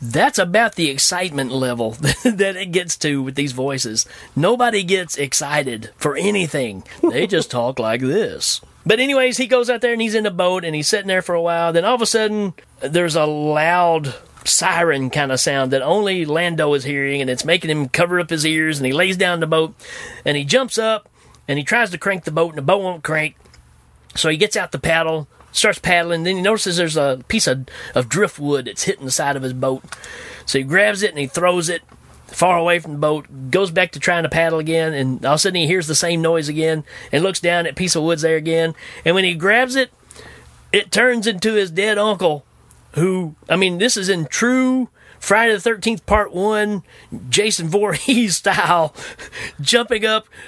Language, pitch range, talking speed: English, 150-205 Hz, 215 wpm